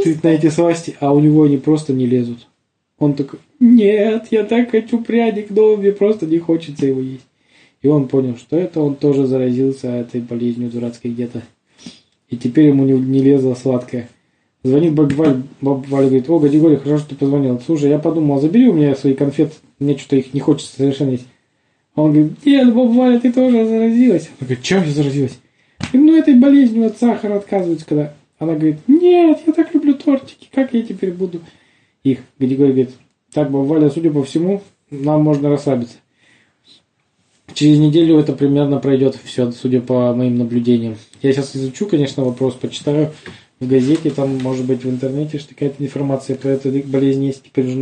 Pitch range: 130-160 Hz